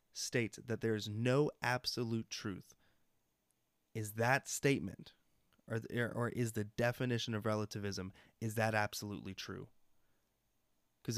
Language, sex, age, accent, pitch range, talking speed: English, male, 20-39, American, 110-125 Hz, 120 wpm